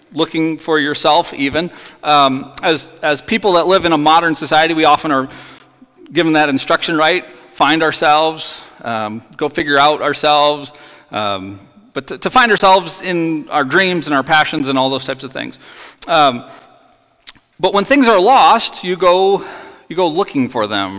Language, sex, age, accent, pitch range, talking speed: English, male, 40-59, American, 140-180 Hz, 170 wpm